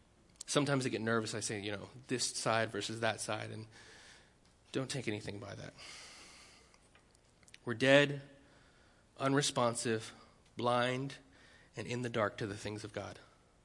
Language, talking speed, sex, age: English, 140 wpm, male, 30-49